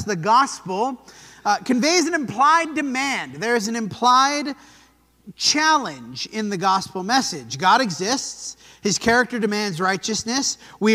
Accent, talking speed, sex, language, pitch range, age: American, 125 wpm, male, English, 185-240 Hz, 30-49